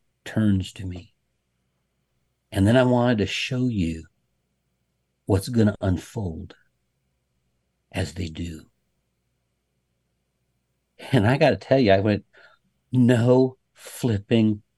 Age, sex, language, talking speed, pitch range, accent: 60-79, male, English, 110 wpm, 85-130 Hz, American